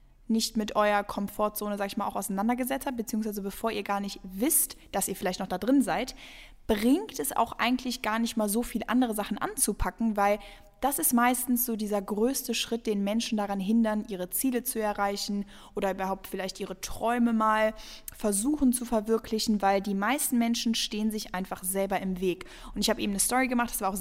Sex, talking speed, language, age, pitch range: female, 200 wpm, German, 10-29, 200-245 Hz